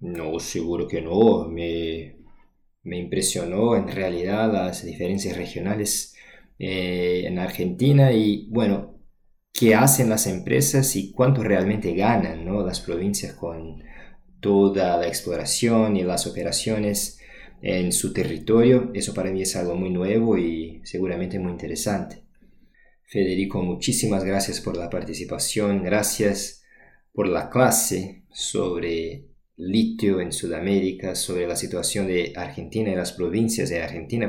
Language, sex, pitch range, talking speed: Portuguese, male, 90-110 Hz, 130 wpm